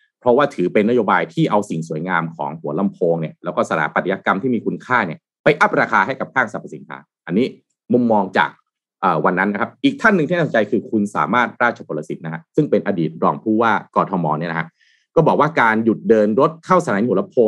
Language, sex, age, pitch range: Thai, male, 30-49, 100-165 Hz